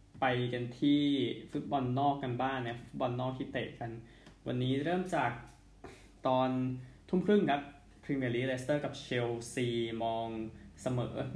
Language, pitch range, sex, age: Thai, 115-140 Hz, male, 20-39